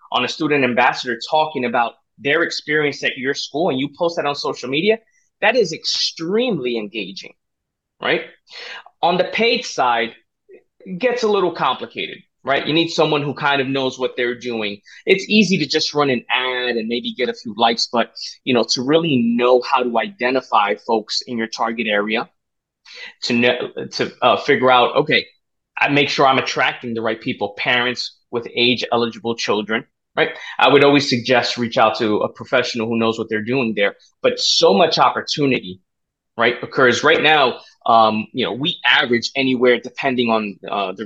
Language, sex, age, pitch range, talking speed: English, male, 20-39, 115-160 Hz, 180 wpm